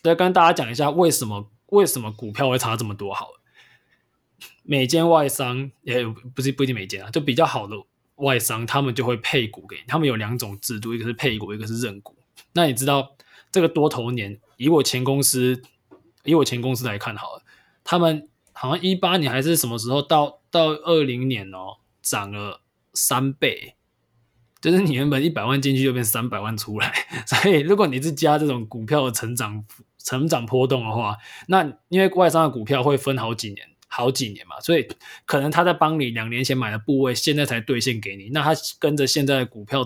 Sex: male